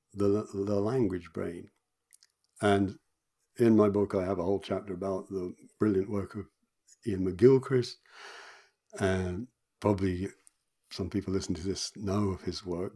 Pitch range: 95-105 Hz